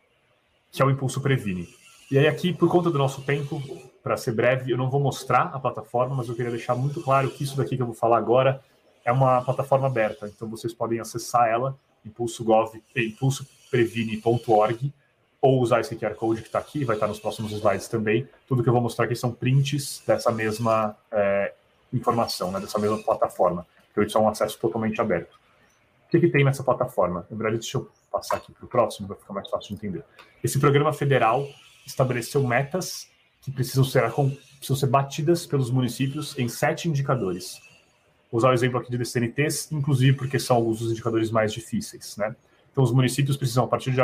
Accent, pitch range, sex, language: Brazilian, 115-140 Hz, male, Portuguese